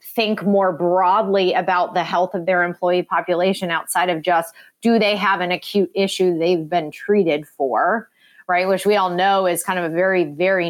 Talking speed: 190 wpm